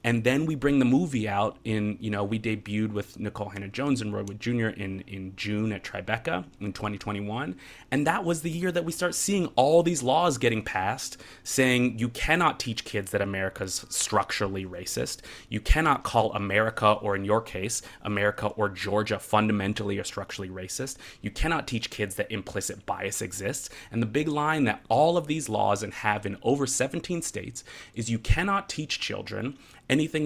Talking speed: 185 wpm